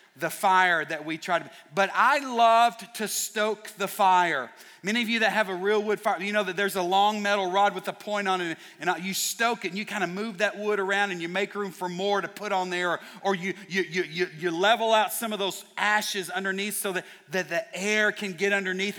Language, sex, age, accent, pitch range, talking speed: English, male, 40-59, American, 180-215 Hz, 245 wpm